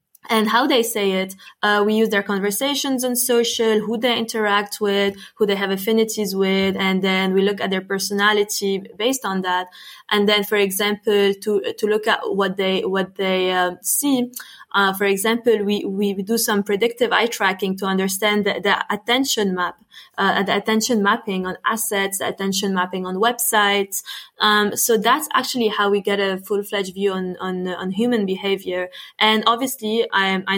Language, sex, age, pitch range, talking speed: English, female, 20-39, 195-220 Hz, 175 wpm